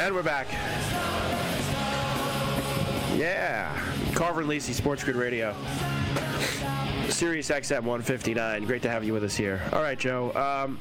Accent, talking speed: American, 130 wpm